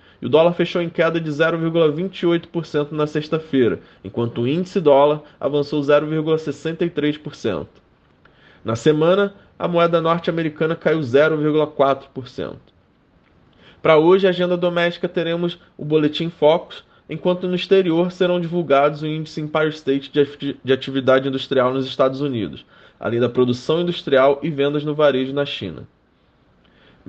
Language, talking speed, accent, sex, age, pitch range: Portuguese, 130 wpm, Brazilian, male, 20-39, 135-165 Hz